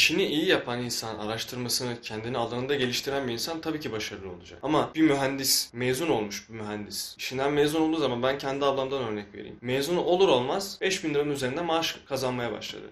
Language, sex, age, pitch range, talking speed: Turkish, male, 20-39, 115-140 Hz, 185 wpm